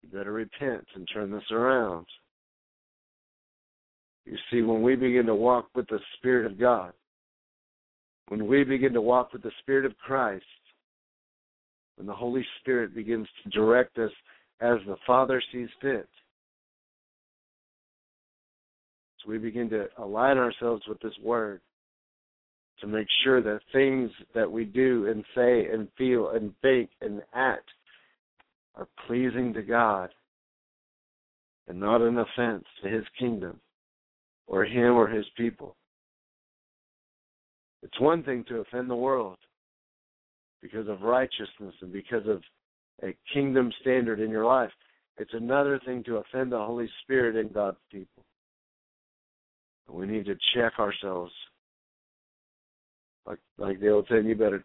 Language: English